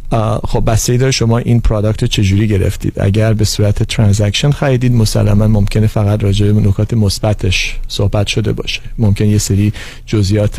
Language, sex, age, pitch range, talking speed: Persian, male, 40-59, 105-120 Hz, 145 wpm